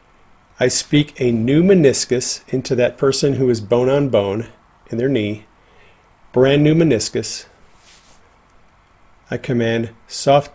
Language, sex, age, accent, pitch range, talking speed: English, male, 40-59, American, 120-155 Hz, 115 wpm